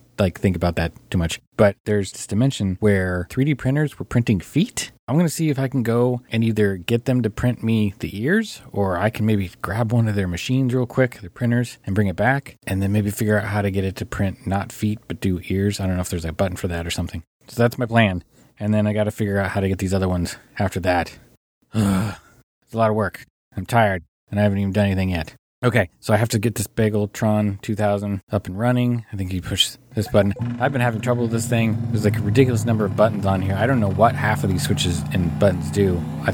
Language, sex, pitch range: English, male, 95-120 Hz